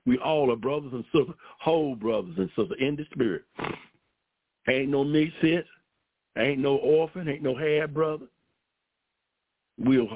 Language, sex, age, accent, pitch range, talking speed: English, male, 60-79, American, 130-165 Hz, 140 wpm